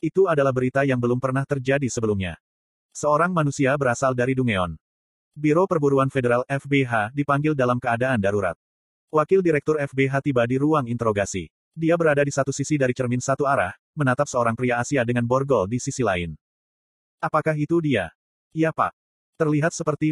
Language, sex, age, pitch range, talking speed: Indonesian, male, 30-49, 120-150 Hz, 160 wpm